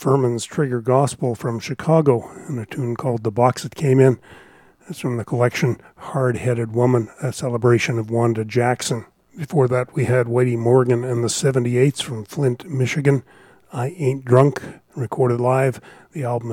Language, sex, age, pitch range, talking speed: English, male, 40-59, 115-130 Hz, 160 wpm